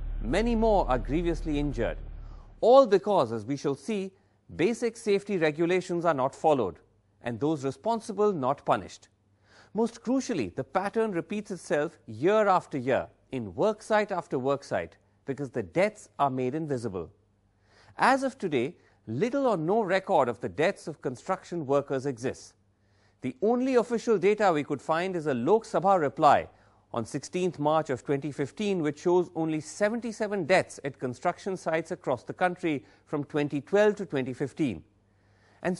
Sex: male